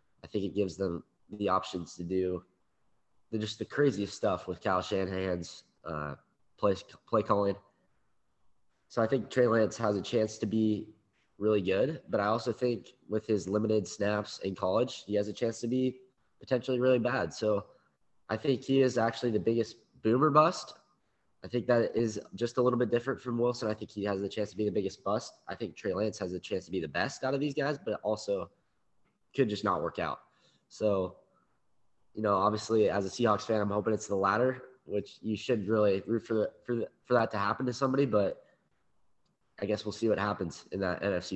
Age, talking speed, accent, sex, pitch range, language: 20-39, 205 wpm, American, male, 100-125 Hz, English